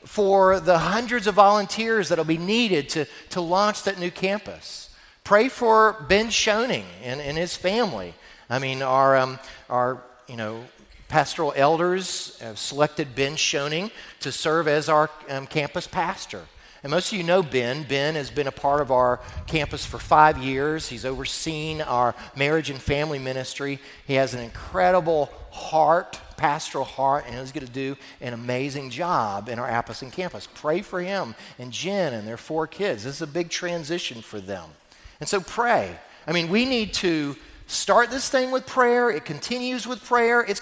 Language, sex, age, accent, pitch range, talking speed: English, male, 40-59, American, 130-195 Hz, 175 wpm